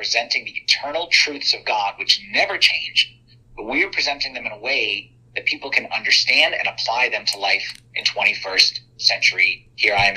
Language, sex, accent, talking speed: English, male, American, 190 wpm